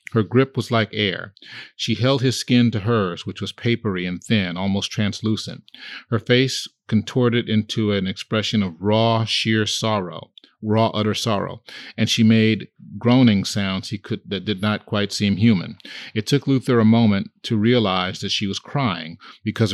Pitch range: 100-115 Hz